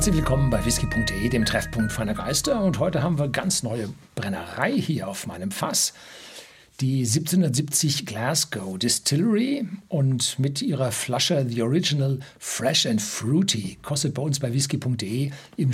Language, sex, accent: German, male, German